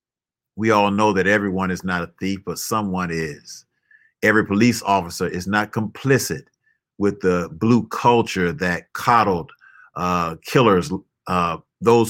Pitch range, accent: 95-120 Hz, American